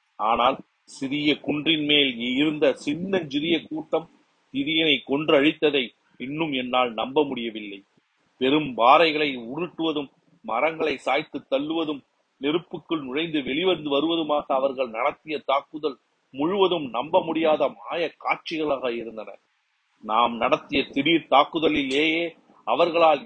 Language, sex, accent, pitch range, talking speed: Tamil, male, native, 135-170 Hz, 55 wpm